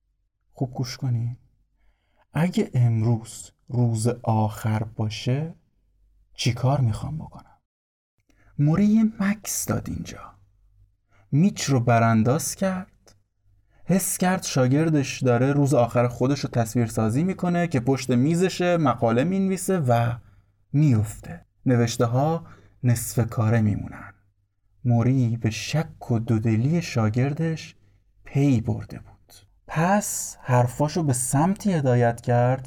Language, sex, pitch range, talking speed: Persian, male, 110-150 Hz, 105 wpm